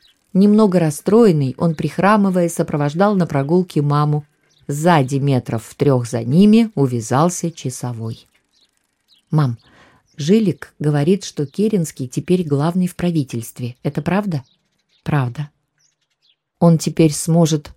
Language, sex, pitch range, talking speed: Russian, female, 135-170 Hz, 105 wpm